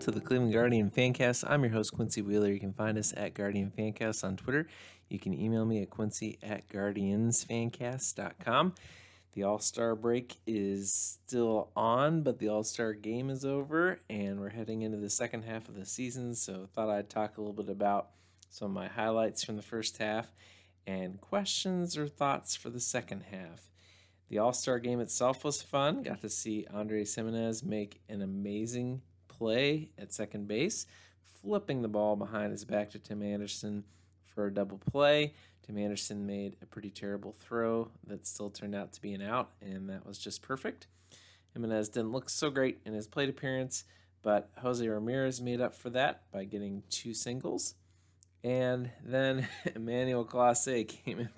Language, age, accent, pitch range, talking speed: English, 30-49, American, 100-120 Hz, 180 wpm